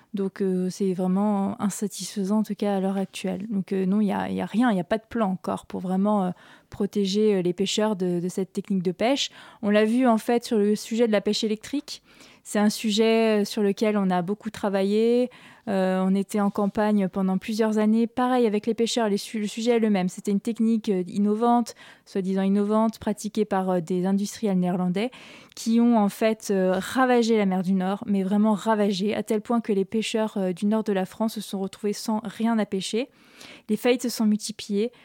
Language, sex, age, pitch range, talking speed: French, female, 20-39, 195-225 Hz, 215 wpm